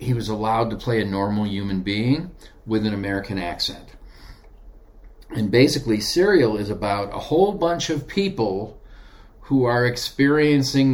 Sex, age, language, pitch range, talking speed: male, 40-59, English, 100-130 Hz, 145 wpm